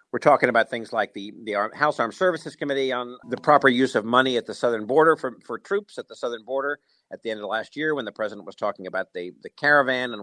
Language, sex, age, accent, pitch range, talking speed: English, male, 50-69, American, 105-130 Hz, 265 wpm